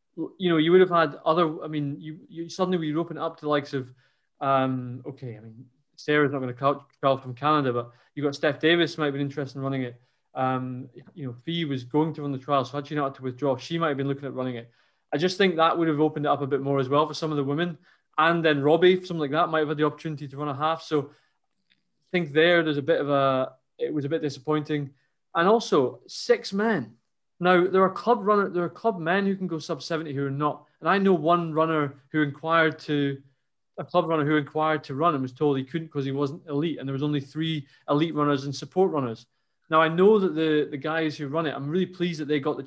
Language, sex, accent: English, male, British